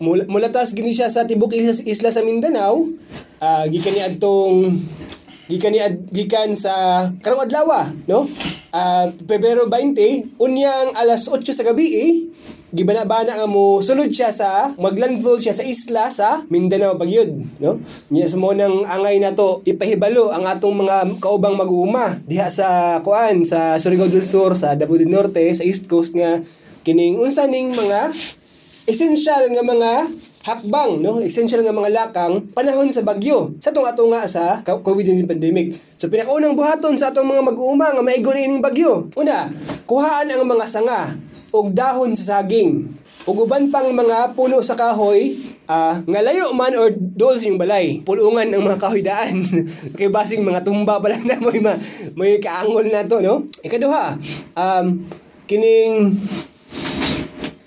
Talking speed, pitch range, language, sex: 150 wpm, 185-250 Hz, Filipino, male